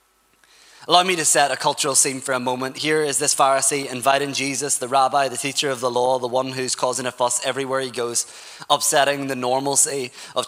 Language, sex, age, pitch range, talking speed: English, male, 20-39, 135-155 Hz, 205 wpm